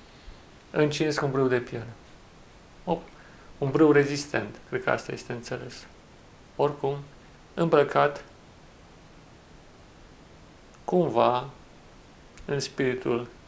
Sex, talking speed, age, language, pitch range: male, 85 wpm, 40-59, Romanian, 120-175 Hz